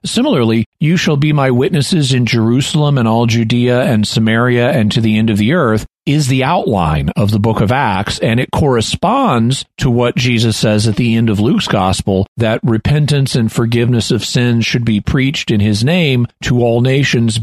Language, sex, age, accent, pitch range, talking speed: English, male, 40-59, American, 105-135 Hz, 195 wpm